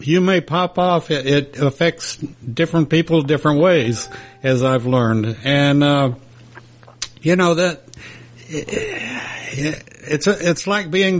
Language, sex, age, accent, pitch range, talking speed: English, male, 60-79, American, 130-165 Hz, 120 wpm